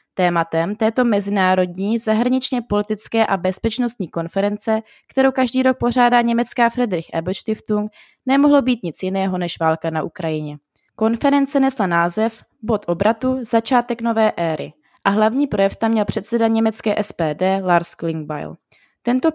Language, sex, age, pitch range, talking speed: Czech, female, 20-39, 185-235 Hz, 130 wpm